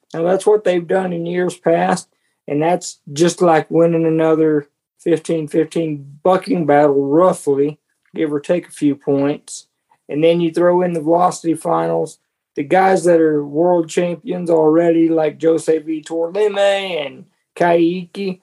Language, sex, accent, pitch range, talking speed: English, male, American, 155-185 Hz, 145 wpm